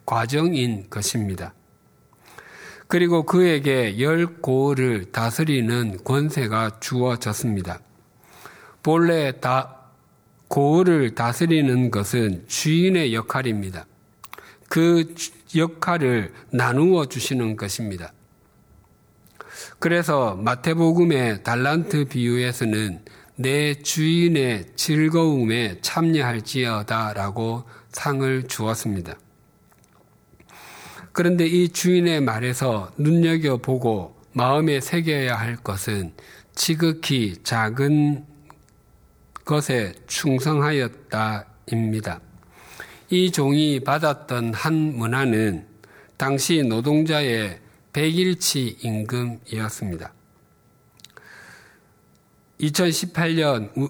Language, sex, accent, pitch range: Korean, male, native, 115-155 Hz